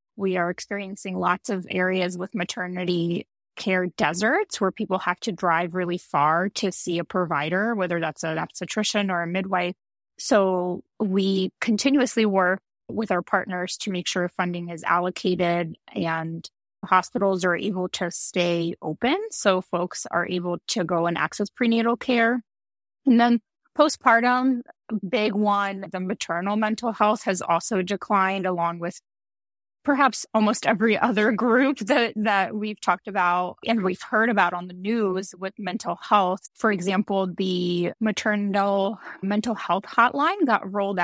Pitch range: 175-215 Hz